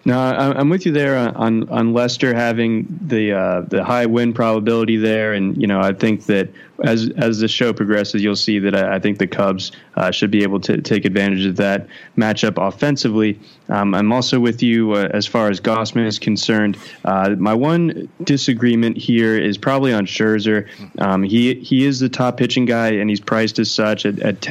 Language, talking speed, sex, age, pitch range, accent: English, 195 wpm, male, 20-39, 105-115 Hz, American